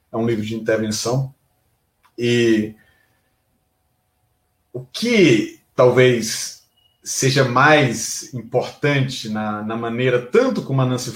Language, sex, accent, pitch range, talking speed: Portuguese, male, Brazilian, 115-170 Hz, 100 wpm